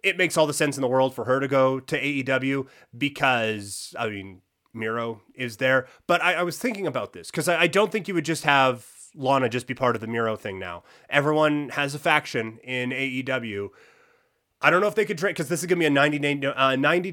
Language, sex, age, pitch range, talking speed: English, male, 30-49, 125-155 Hz, 240 wpm